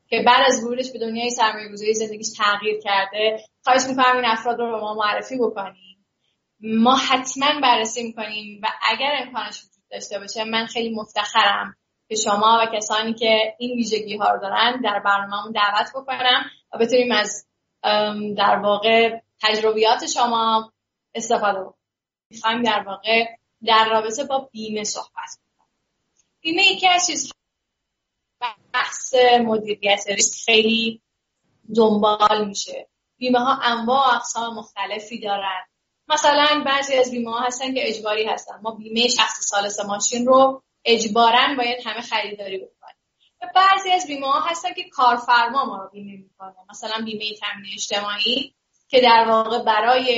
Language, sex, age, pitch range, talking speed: Persian, female, 10-29, 210-250 Hz, 135 wpm